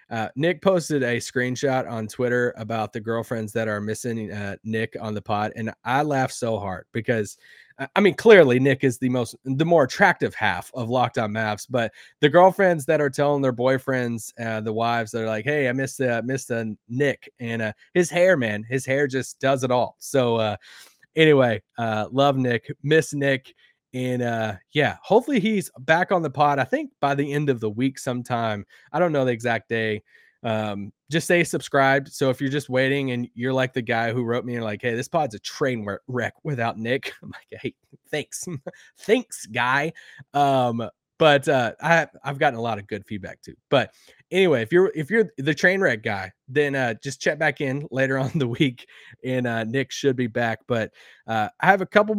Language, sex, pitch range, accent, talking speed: English, male, 115-145 Hz, American, 210 wpm